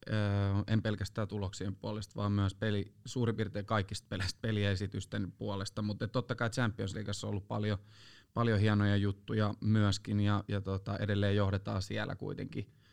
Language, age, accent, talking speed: Finnish, 30-49, native, 150 wpm